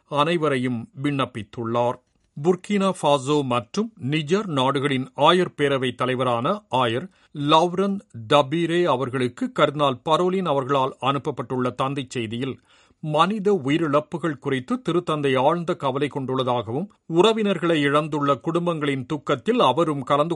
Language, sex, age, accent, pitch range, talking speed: Tamil, male, 50-69, native, 135-180 Hz, 95 wpm